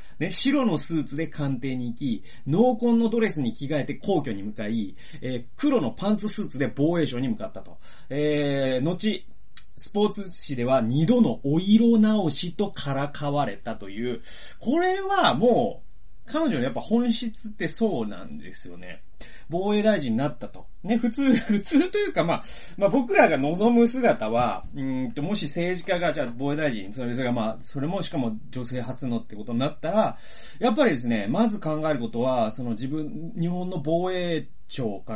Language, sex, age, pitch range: Japanese, male, 30-49, 115-195 Hz